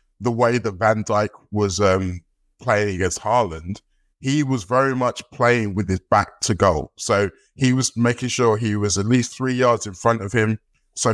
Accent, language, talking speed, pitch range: British, English, 195 wpm, 95-120 Hz